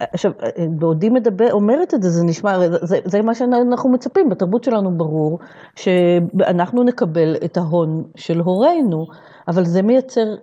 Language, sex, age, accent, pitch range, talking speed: Hebrew, female, 40-59, native, 170-230 Hz, 145 wpm